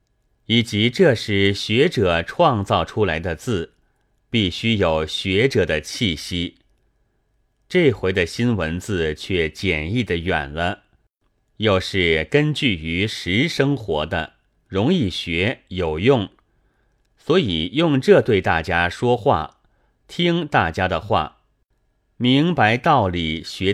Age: 30-49